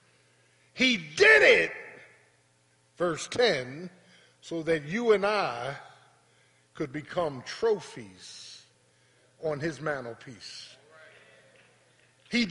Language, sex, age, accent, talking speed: English, male, 50-69, American, 80 wpm